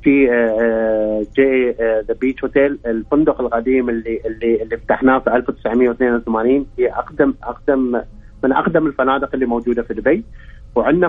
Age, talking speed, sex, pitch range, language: 30-49, 130 wpm, male, 120-140 Hz, Arabic